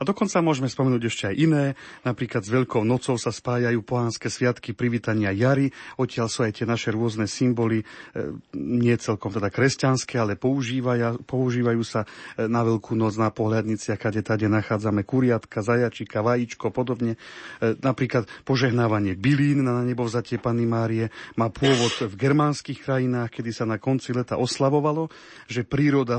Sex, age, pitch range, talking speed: male, 40-59, 115-130 Hz, 150 wpm